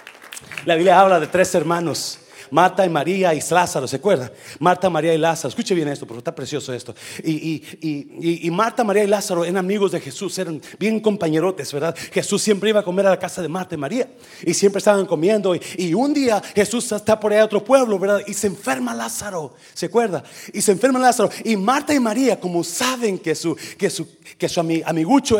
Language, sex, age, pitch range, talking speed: Spanish, male, 30-49, 160-225 Hz, 220 wpm